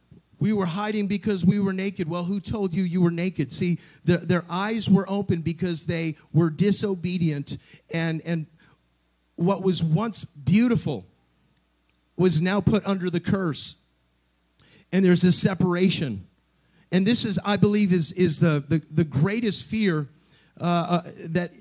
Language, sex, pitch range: English, male, 155-190 Hz